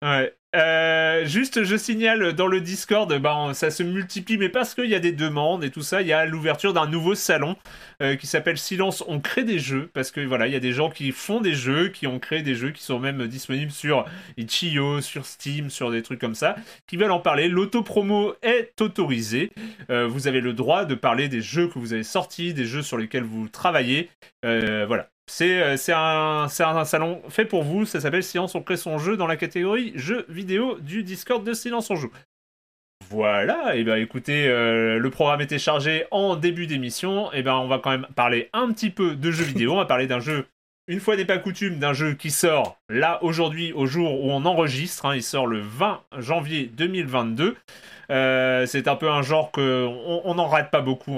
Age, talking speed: 30-49, 225 wpm